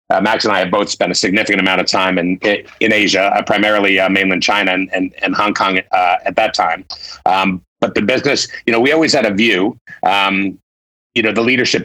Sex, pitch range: male, 95-110 Hz